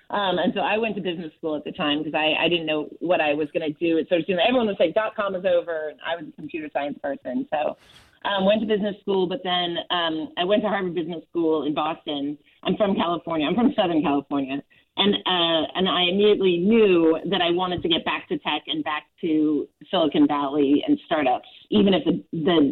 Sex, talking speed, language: female, 225 wpm, English